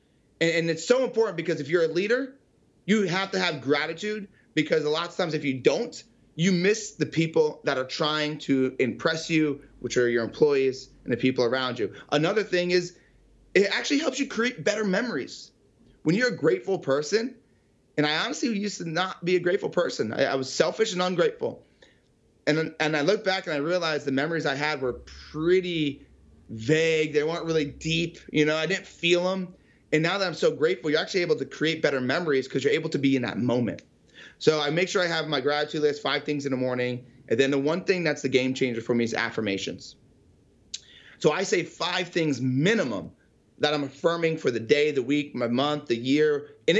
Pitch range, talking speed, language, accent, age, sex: 145-195 Hz, 210 wpm, English, American, 30-49, male